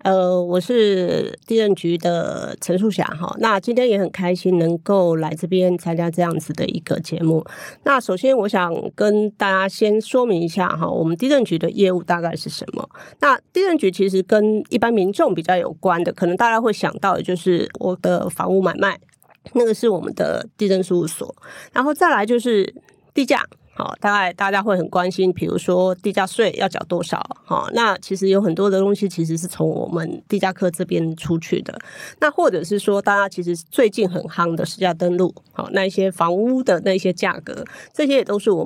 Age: 40-59